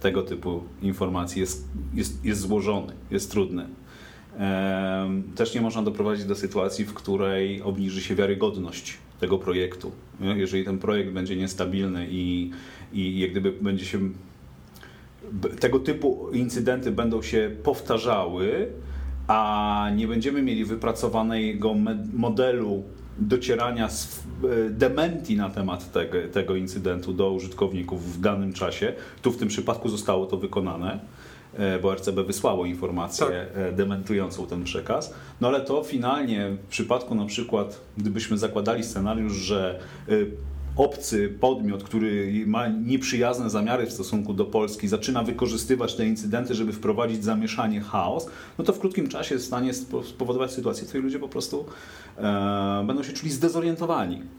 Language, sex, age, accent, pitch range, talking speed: Polish, male, 30-49, native, 95-120 Hz, 130 wpm